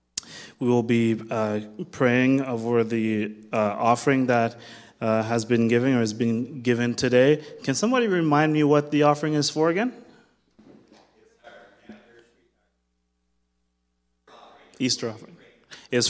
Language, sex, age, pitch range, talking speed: English, male, 20-39, 110-125 Hz, 120 wpm